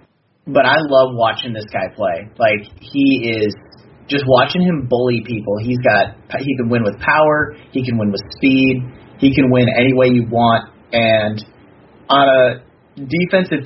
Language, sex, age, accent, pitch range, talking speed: English, male, 30-49, American, 110-135 Hz, 165 wpm